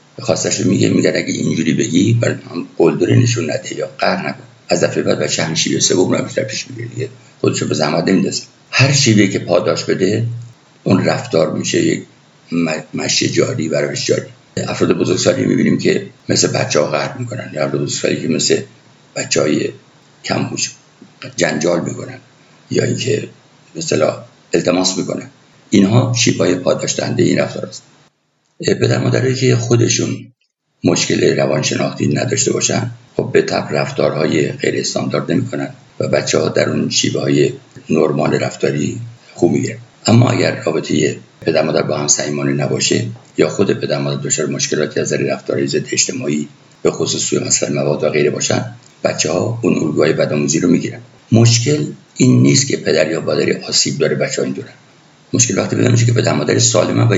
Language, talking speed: Persian, 155 wpm